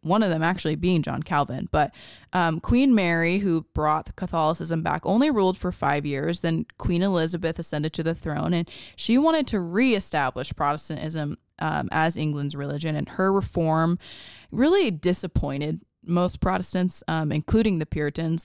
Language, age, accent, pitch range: English, 20-39, American, 155-185 Hz